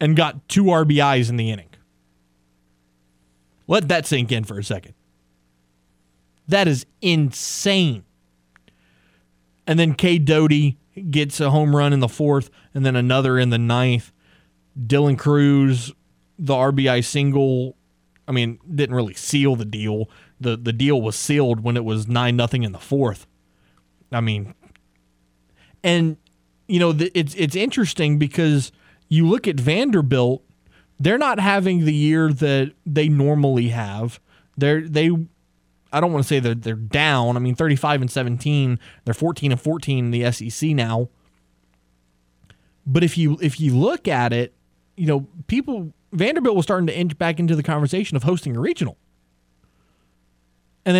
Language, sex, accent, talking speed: English, male, American, 155 wpm